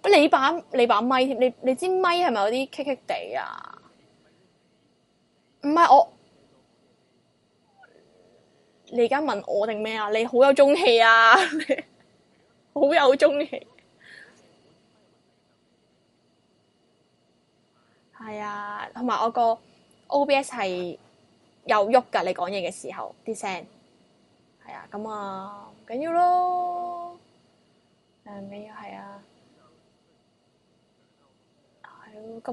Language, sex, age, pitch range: Chinese, female, 10-29, 210-275 Hz